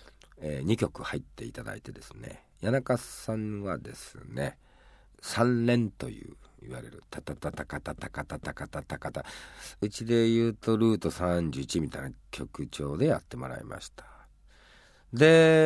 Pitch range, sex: 75-130 Hz, male